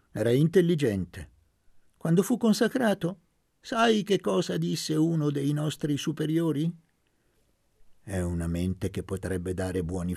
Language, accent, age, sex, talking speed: Italian, native, 50-69, male, 120 wpm